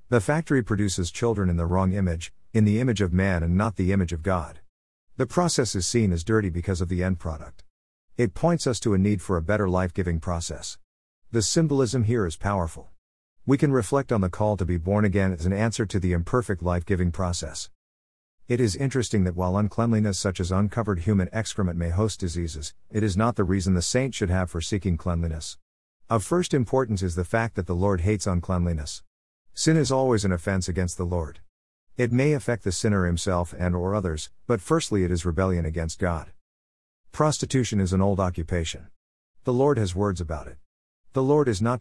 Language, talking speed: English, 205 wpm